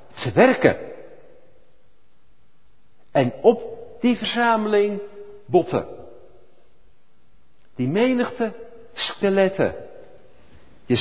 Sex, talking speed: male, 60 wpm